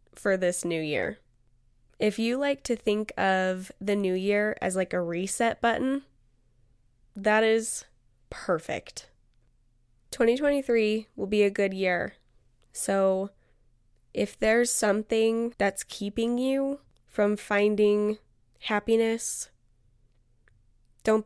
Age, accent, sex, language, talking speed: 10-29, American, female, English, 105 wpm